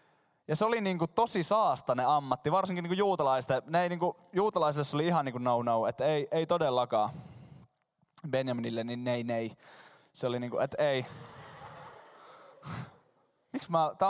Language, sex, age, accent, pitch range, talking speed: Finnish, male, 20-39, native, 155-195 Hz, 160 wpm